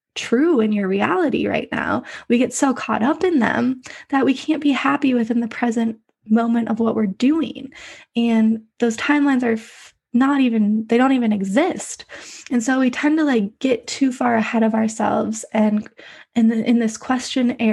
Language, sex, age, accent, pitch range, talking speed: English, female, 20-39, American, 210-245 Hz, 185 wpm